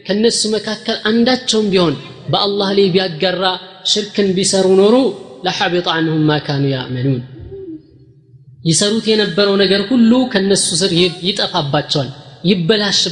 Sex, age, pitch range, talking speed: female, 20-39, 150-200 Hz, 115 wpm